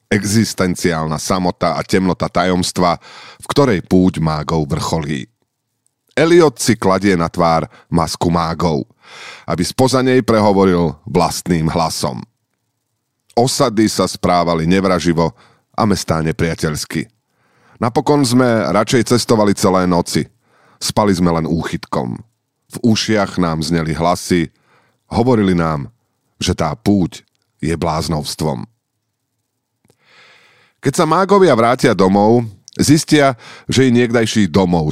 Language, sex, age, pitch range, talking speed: Slovak, male, 40-59, 85-120 Hz, 110 wpm